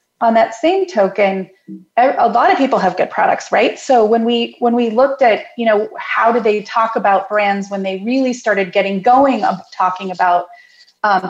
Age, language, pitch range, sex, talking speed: 30-49, English, 200-260 Hz, female, 195 wpm